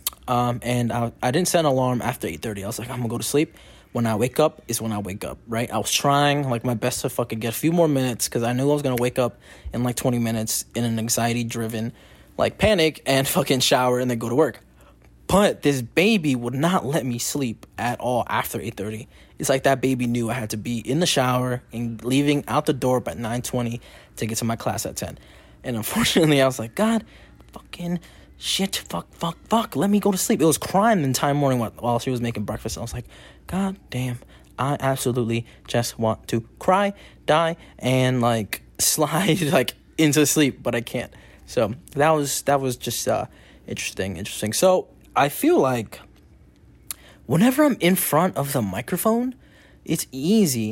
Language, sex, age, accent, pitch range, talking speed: English, male, 20-39, American, 115-150 Hz, 205 wpm